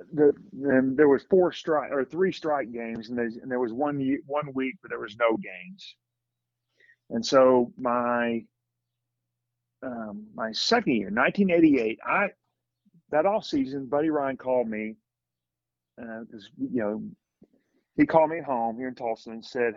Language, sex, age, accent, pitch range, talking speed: English, male, 40-59, American, 115-150 Hz, 160 wpm